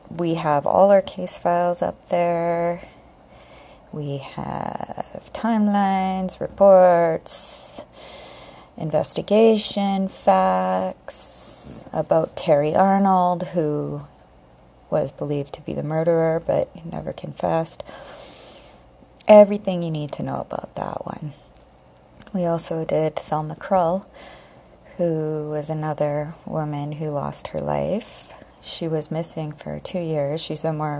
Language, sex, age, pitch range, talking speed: English, female, 30-49, 145-180 Hz, 110 wpm